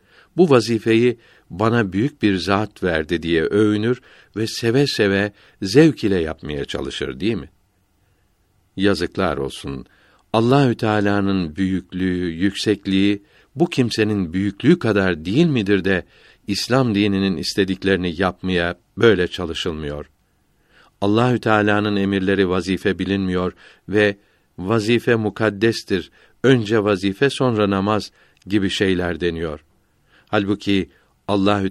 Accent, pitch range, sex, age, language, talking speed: native, 90-110 Hz, male, 60-79, Turkish, 105 wpm